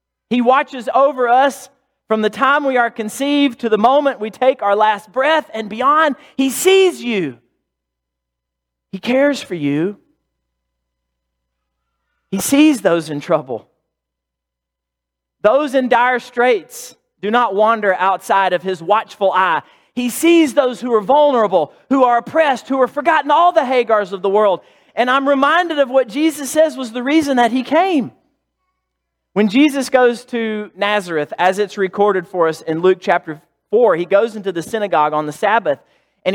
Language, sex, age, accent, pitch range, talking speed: English, male, 40-59, American, 185-270 Hz, 160 wpm